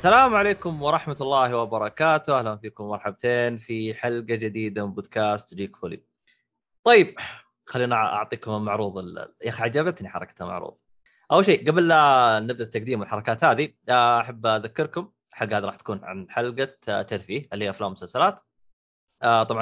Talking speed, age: 140 wpm, 20-39